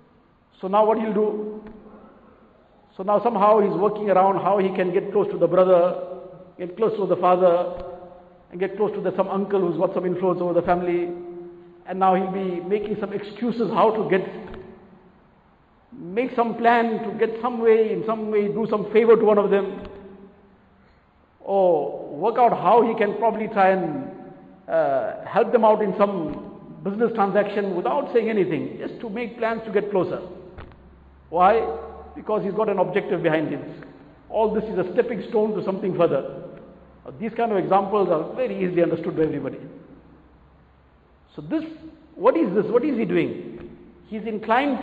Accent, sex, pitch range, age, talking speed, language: Indian, male, 185-225 Hz, 50-69, 175 wpm, English